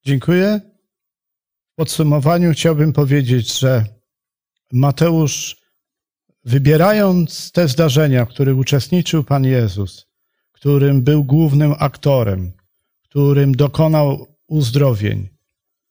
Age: 50-69